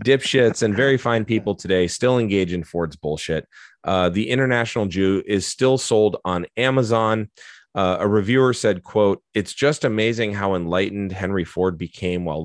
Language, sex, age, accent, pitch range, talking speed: English, male, 30-49, American, 85-110 Hz, 165 wpm